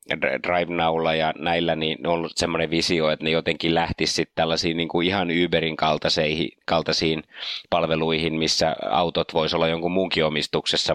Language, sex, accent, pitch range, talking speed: Finnish, male, native, 75-85 Hz, 135 wpm